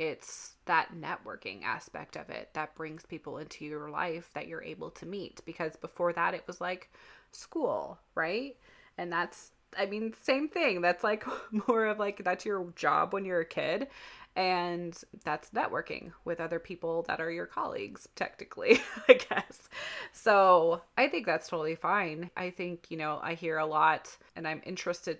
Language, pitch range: English, 165-210 Hz